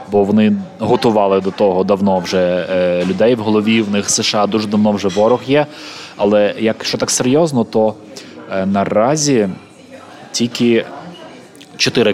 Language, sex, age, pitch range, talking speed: Ukrainian, male, 20-39, 100-120 Hz, 130 wpm